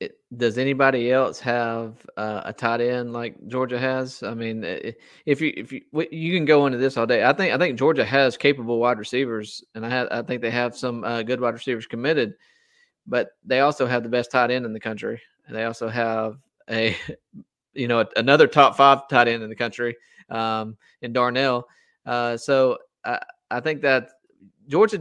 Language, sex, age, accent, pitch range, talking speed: English, male, 30-49, American, 115-135 Hz, 195 wpm